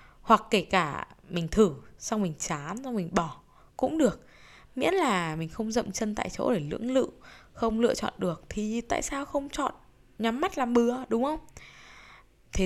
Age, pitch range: 10-29, 160-230 Hz